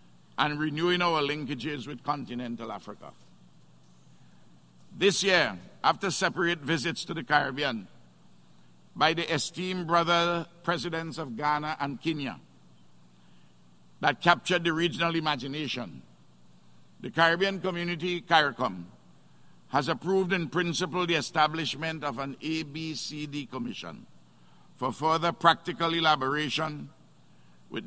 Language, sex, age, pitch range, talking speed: English, male, 60-79, 120-170 Hz, 105 wpm